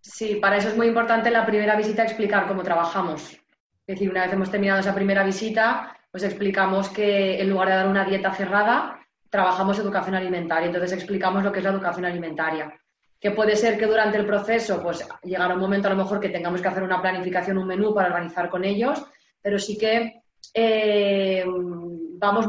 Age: 20-39